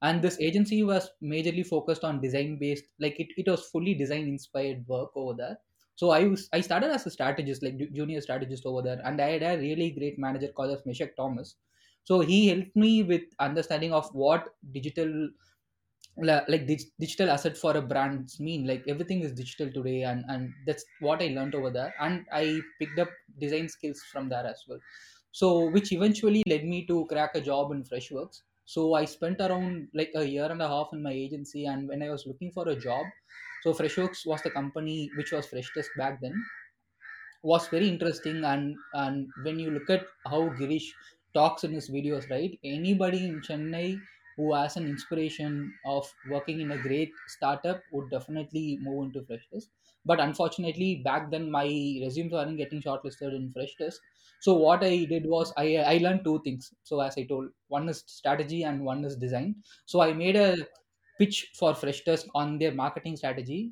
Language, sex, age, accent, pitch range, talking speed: English, male, 20-39, Indian, 140-170 Hz, 190 wpm